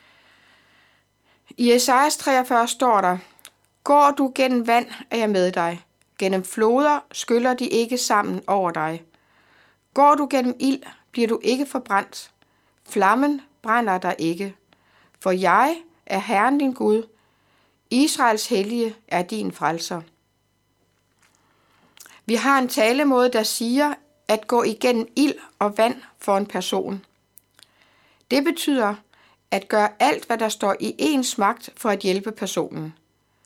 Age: 60-79